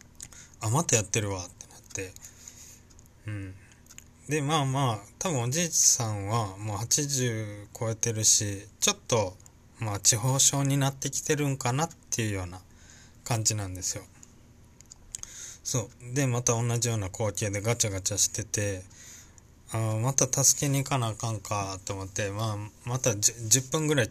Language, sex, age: Japanese, male, 20-39